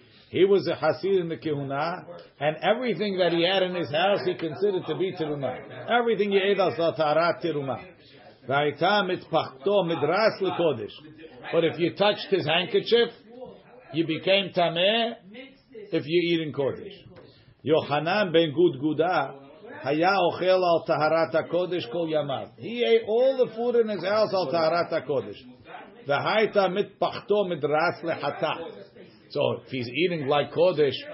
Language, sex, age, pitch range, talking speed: English, male, 50-69, 155-200 Hz, 135 wpm